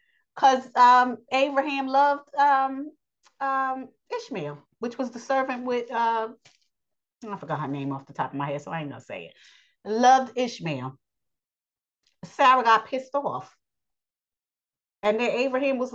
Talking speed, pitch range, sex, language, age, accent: 145 wpm, 200-270 Hz, female, English, 40-59, American